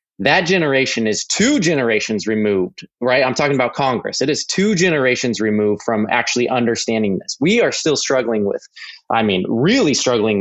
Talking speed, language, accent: 165 wpm, English, American